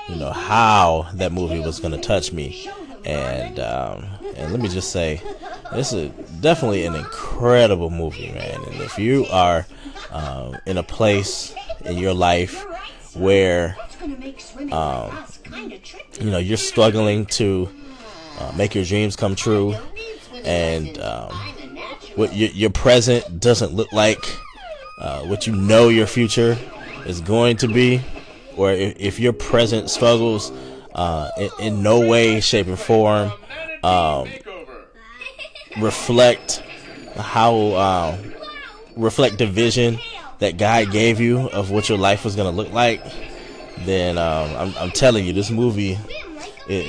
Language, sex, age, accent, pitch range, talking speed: English, male, 20-39, American, 95-120 Hz, 140 wpm